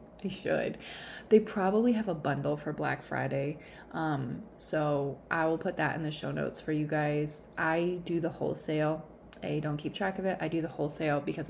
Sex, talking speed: female, 195 wpm